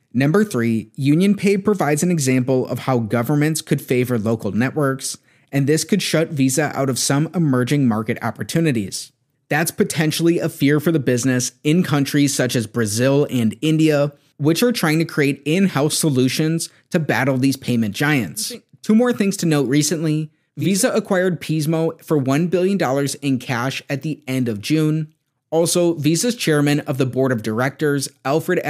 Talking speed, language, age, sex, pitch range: 165 wpm, English, 30-49, male, 130-165 Hz